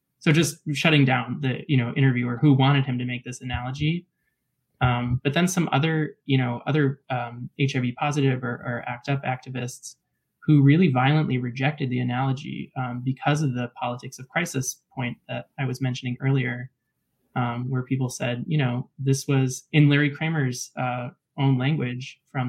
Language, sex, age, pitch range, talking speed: English, male, 20-39, 125-140 Hz, 170 wpm